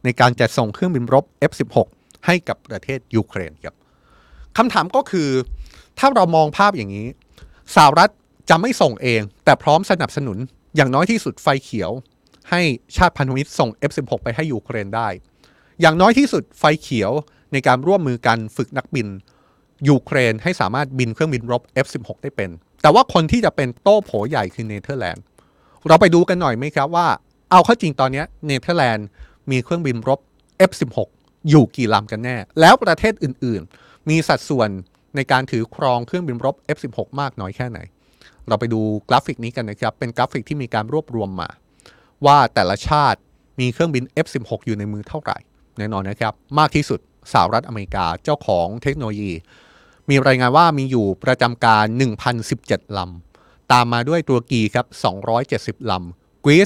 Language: Thai